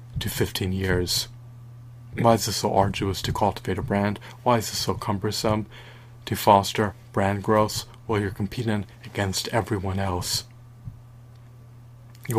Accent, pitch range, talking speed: American, 100-120 Hz, 135 wpm